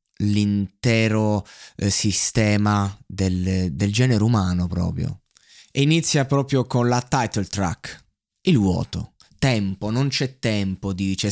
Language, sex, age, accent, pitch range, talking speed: Italian, male, 20-39, native, 100-125 Hz, 115 wpm